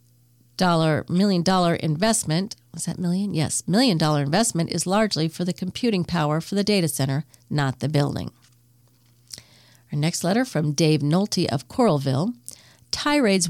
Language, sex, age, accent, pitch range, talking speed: English, female, 50-69, American, 150-205 Hz, 145 wpm